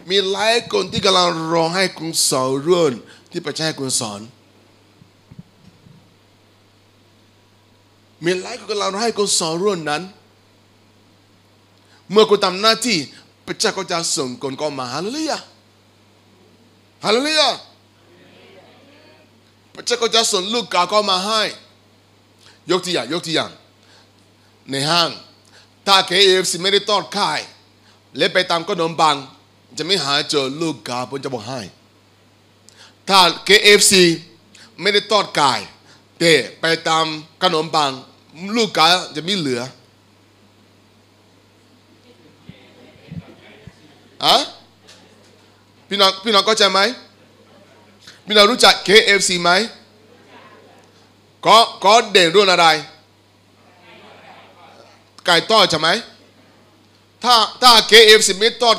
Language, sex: Thai, male